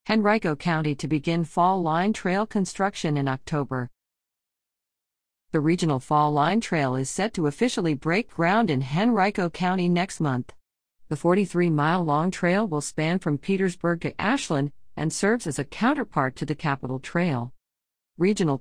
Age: 50-69